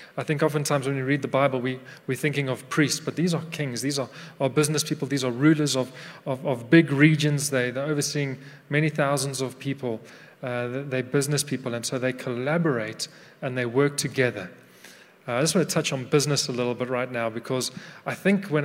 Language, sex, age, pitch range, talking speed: English, male, 30-49, 130-155 Hz, 205 wpm